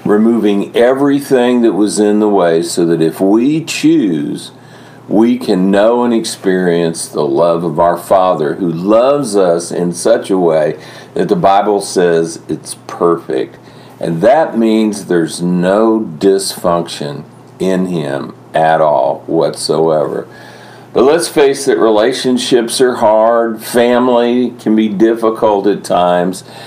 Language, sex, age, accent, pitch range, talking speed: English, male, 50-69, American, 90-115 Hz, 135 wpm